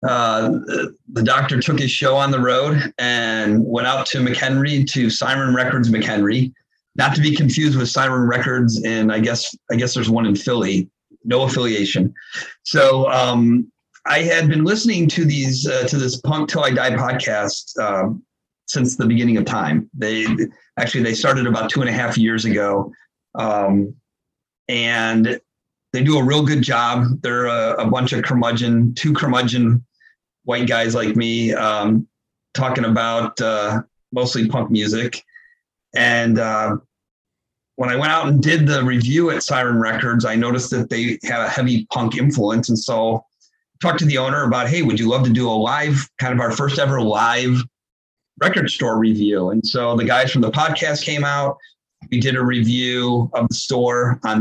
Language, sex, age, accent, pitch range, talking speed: English, male, 40-59, American, 115-135 Hz, 175 wpm